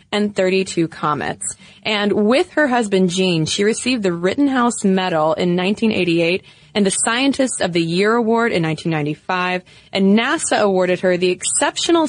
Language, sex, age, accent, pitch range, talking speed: English, female, 20-39, American, 180-235 Hz, 150 wpm